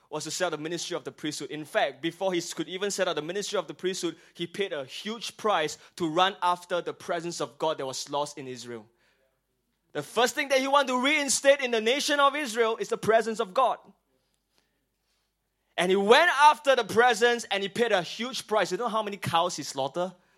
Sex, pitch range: male, 145-205 Hz